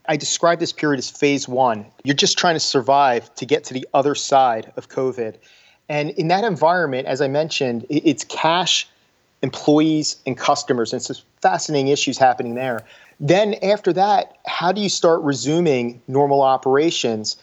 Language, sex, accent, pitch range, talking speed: English, male, American, 130-160 Hz, 165 wpm